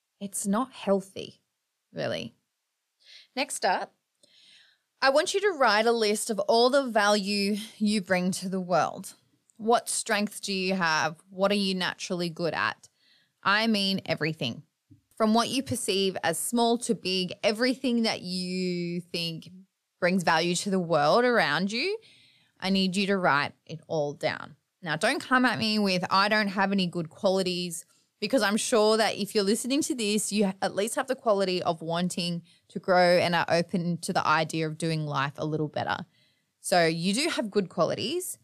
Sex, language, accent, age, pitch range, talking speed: female, English, Australian, 20-39, 175-225 Hz, 175 wpm